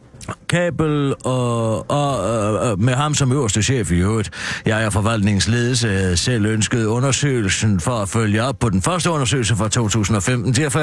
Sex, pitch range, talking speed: male, 110-150 Hz, 165 wpm